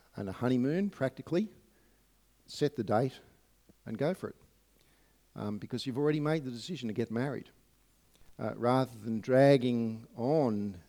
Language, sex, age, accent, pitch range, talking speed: English, male, 50-69, Australian, 120-190 Hz, 145 wpm